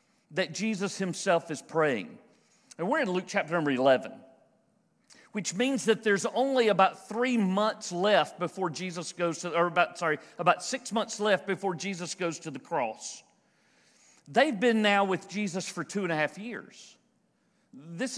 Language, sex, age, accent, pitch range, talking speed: English, male, 50-69, American, 180-230 Hz, 165 wpm